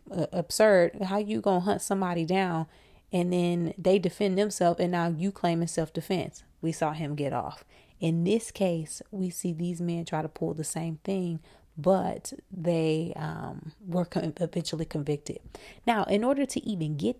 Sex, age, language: female, 30-49, English